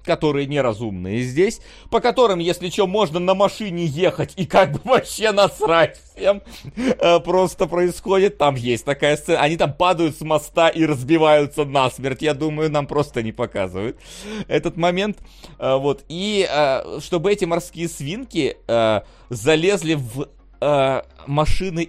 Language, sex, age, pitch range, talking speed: Russian, male, 30-49, 140-180 Hz, 130 wpm